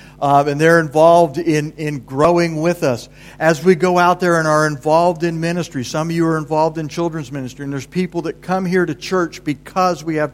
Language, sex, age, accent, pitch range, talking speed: English, male, 50-69, American, 140-180 Hz, 220 wpm